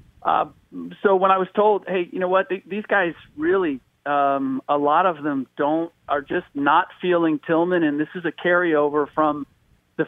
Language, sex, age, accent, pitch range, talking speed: English, male, 40-59, American, 145-175 Hz, 185 wpm